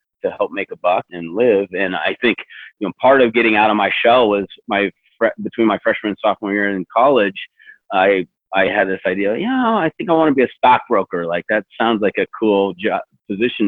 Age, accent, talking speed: 40-59, American, 225 wpm